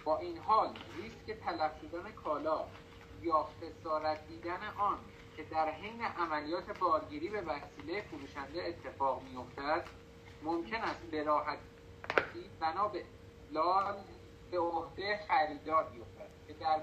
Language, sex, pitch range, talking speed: Persian, male, 125-165 Hz, 120 wpm